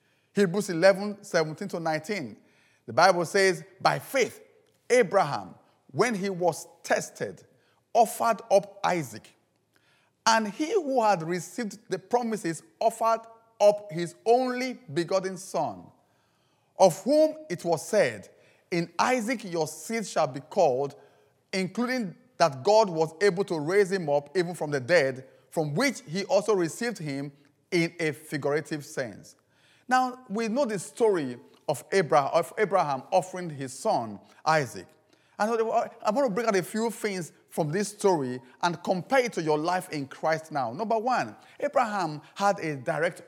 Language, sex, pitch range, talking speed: English, male, 160-220 Hz, 140 wpm